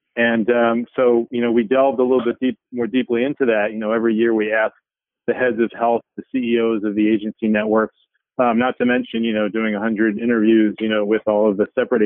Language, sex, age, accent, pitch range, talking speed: English, male, 40-59, American, 110-120 Hz, 230 wpm